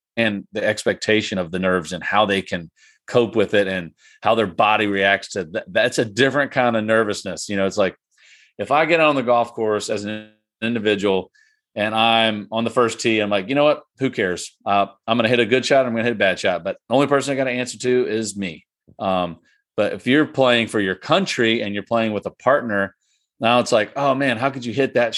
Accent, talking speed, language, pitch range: American, 245 wpm, English, 100-125 Hz